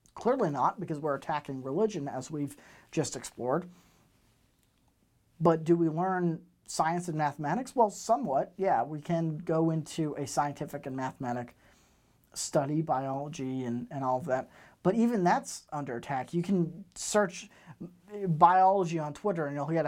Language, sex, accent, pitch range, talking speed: English, male, American, 145-180 Hz, 150 wpm